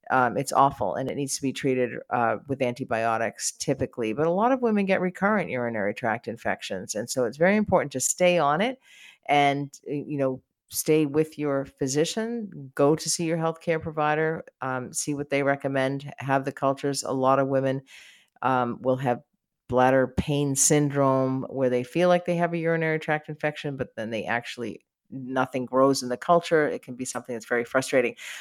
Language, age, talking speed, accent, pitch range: English, 50-69, 190 wpm, American, 130-170 Hz